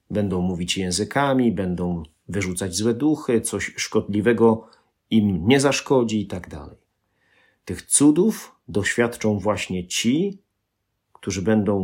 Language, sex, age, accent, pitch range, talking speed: Polish, male, 40-59, native, 95-120 Hz, 110 wpm